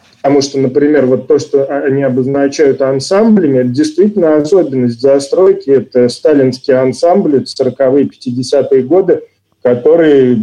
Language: Russian